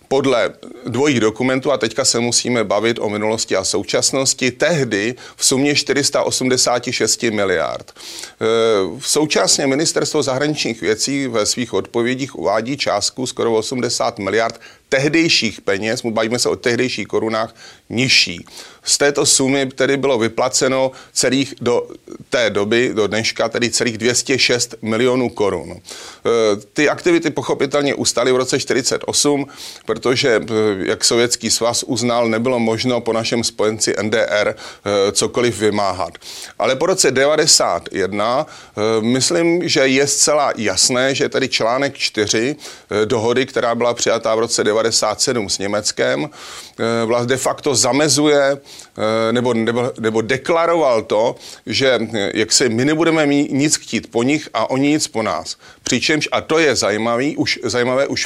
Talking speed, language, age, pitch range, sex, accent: 140 wpm, Czech, 30-49, 115-140 Hz, male, native